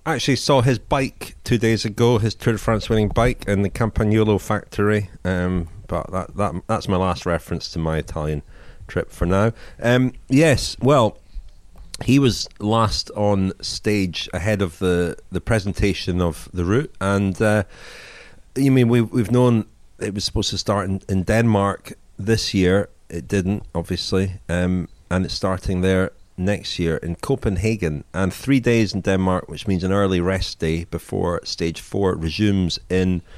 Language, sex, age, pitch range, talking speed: English, male, 30-49, 90-110 Hz, 165 wpm